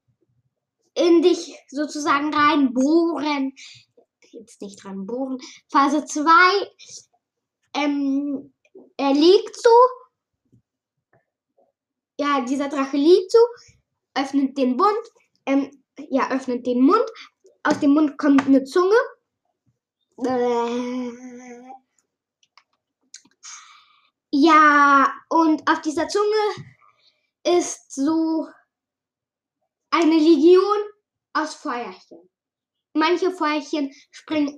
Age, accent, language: 10-29, German, German